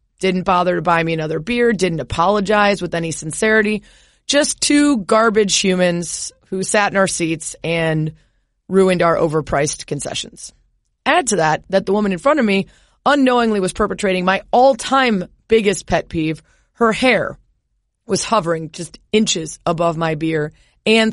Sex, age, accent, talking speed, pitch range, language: female, 30-49, American, 155 wpm, 165-205 Hz, English